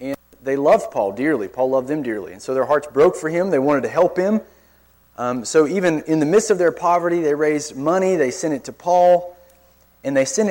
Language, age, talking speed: English, 30-49, 230 wpm